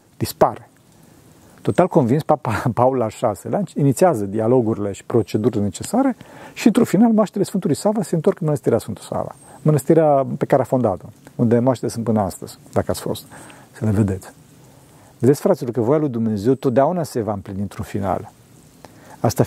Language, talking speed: Romanian, 165 wpm